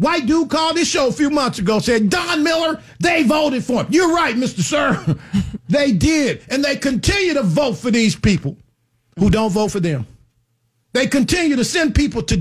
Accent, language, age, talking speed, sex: American, English, 50-69, 200 wpm, male